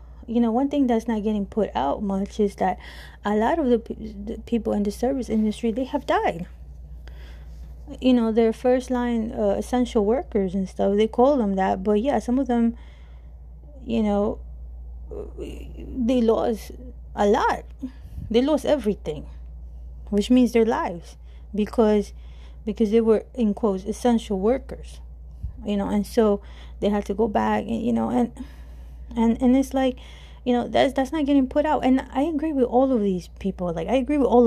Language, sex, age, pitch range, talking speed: English, female, 30-49, 175-240 Hz, 180 wpm